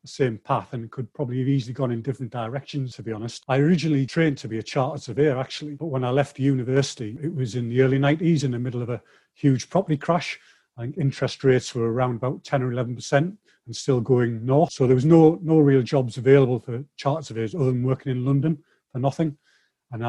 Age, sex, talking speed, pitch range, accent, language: 40-59, male, 225 wpm, 125-150 Hz, British, English